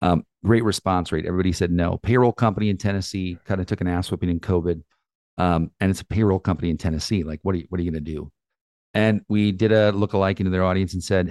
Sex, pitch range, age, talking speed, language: male, 90-105 Hz, 40-59, 250 wpm, English